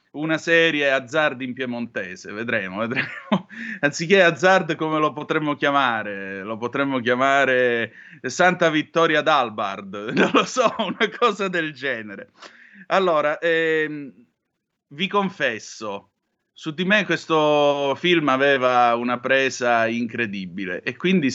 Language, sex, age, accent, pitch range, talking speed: Italian, male, 30-49, native, 125-175 Hz, 115 wpm